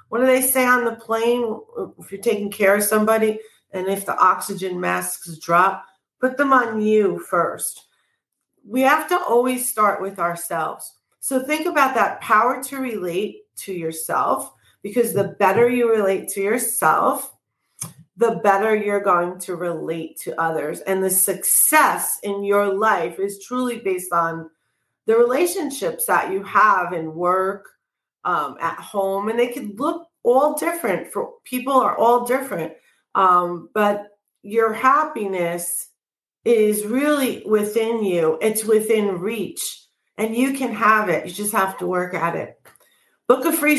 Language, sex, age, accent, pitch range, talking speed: English, female, 40-59, American, 185-245 Hz, 155 wpm